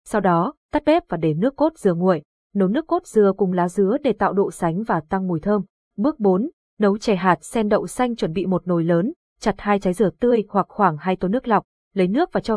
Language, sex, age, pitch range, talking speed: Vietnamese, female, 20-39, 185-230 Hz, 255 wpm